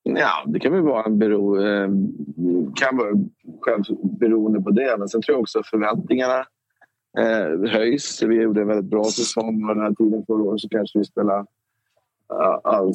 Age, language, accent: 20-39, Swedish, native